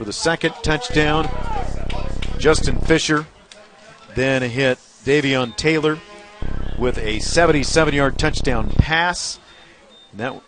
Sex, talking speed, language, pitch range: male, 90 wpm, English, 110-155 Hz